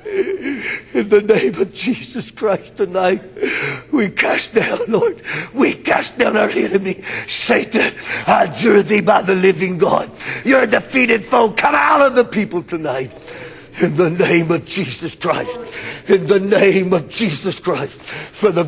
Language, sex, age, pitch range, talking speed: English, male, 60-79, 160-195 Hz, 155 wpm